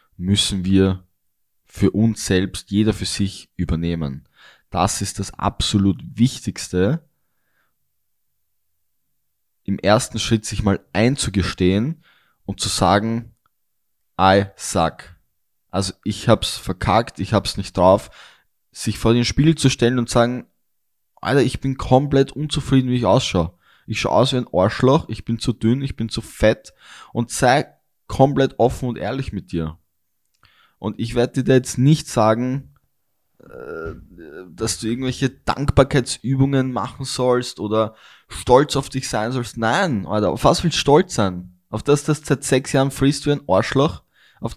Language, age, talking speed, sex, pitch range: German, 10-29, 150 wpm, male, 95-130 Hz